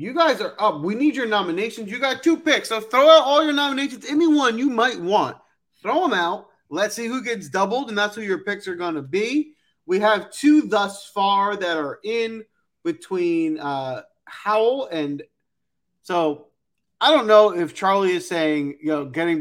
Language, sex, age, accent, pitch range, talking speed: English, male, 30-49, American, 145-210 Hz, 190 wpm